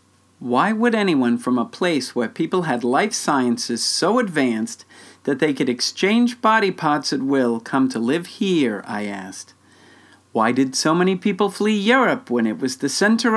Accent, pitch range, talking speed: American, 130-210 Hz, 175 wpm